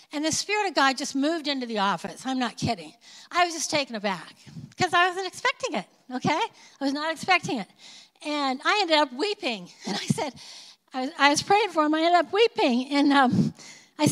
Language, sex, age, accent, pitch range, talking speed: English, female, 50-69, American, 260-345 Hz, 215 wpm